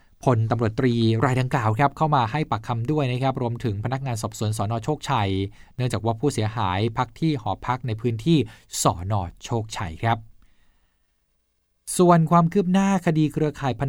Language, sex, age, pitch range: Thai, male, 20-39, 110-140 Hz